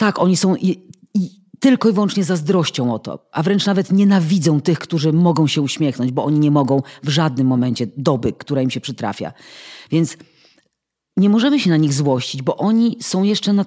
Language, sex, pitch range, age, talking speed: Polish, female, 140-180 Hz, 40-59, 185 wpm